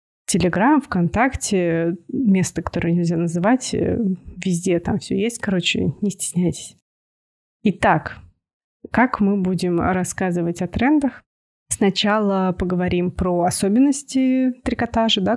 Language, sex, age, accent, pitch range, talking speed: Russian, female, 20-39, native, 175-220 Hz, 100 wpm